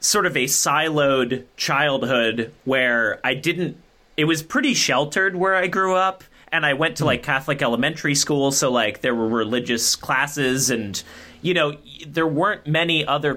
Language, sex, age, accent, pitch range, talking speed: English, male, 30-49, American, 125-155 Hz, 165 wpm